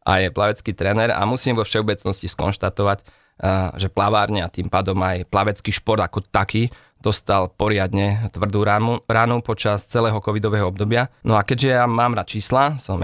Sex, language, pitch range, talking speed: male, Slovak, 95-115 Hz, 160 wpm